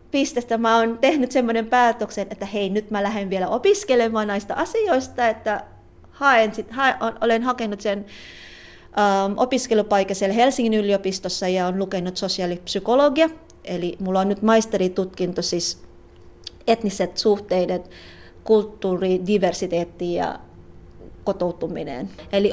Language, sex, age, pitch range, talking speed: Finnish, female, 30-49, 185-240 Hz, 110 wpm